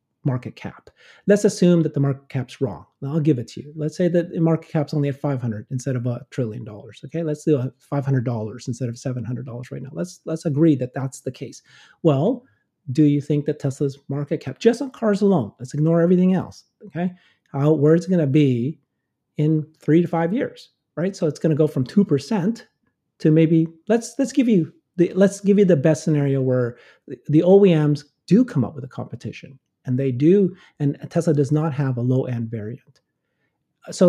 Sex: male